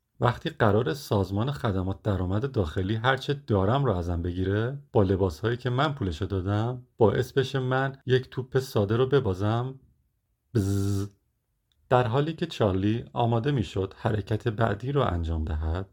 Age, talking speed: 40-59, 140 wpm